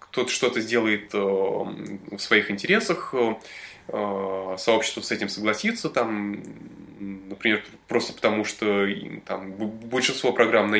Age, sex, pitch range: 20-39, male, 100-115 Hz